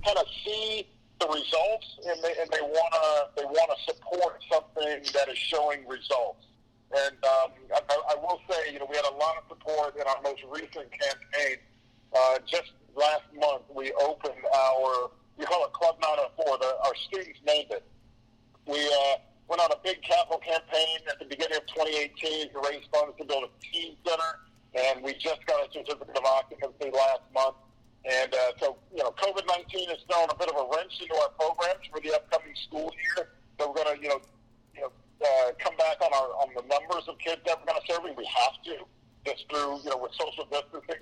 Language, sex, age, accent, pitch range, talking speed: English, male, 50-69, American, 135-165 Hz, 200 wpm